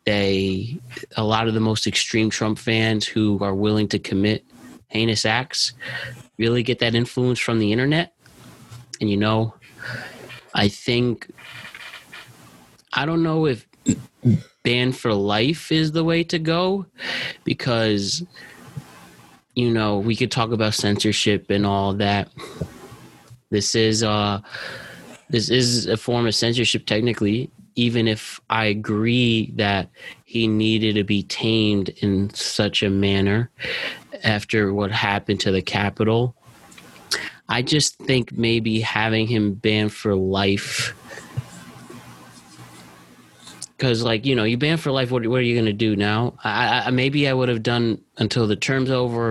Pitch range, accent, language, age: 105-125 Hz, American, English, 20-39